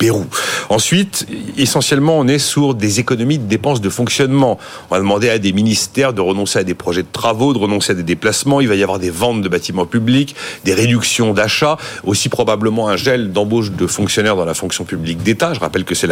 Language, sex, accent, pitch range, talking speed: French, male, French, 100-150 Hz, 215 wpm